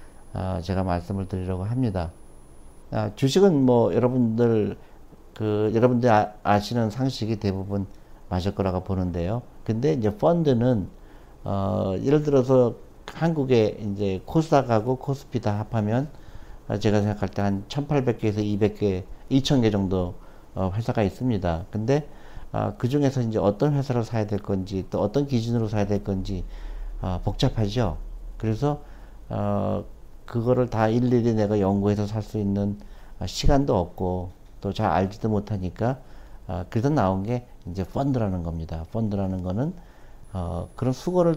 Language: Korean